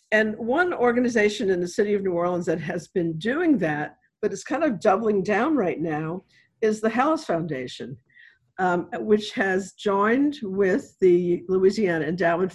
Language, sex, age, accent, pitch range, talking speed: English, female, 50-69, American, 170-230 Hz, 165 wpm